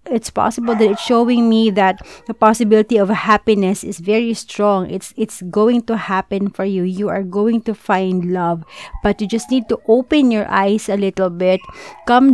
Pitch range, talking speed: 190-225 Hz, 190 wpm